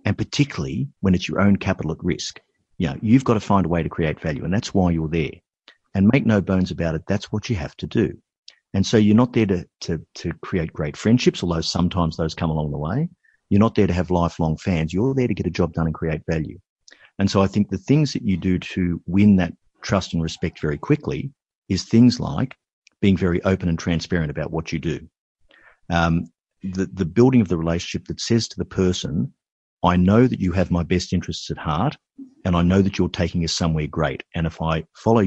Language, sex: English, male